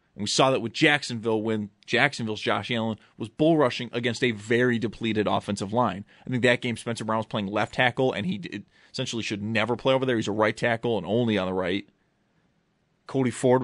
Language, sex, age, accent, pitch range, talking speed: English, male, 30-49, American, 110-140 Hz, 210 wpm